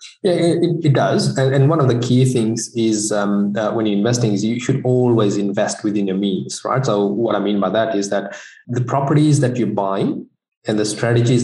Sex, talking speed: male, 220 wpm